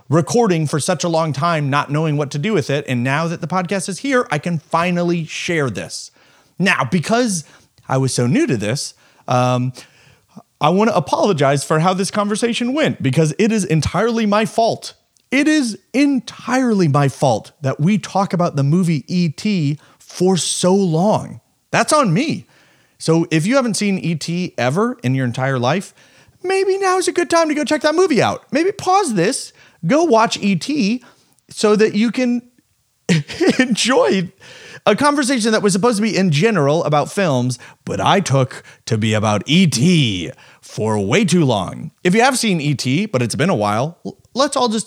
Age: 30-49